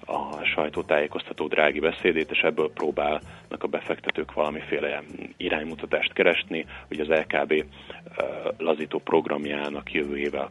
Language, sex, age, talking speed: Hungarian, male, 40-59, 105 wpm